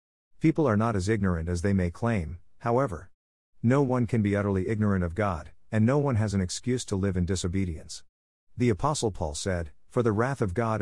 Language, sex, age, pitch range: English, male, 50-69, 90-115 Hz